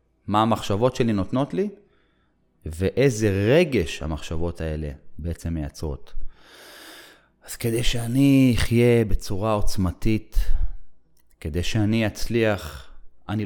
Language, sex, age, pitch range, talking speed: Hebrew, male, 30-49, 85-115 Hz, 95 wpm